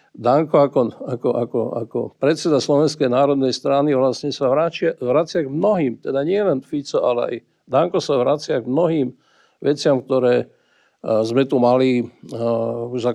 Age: 50-69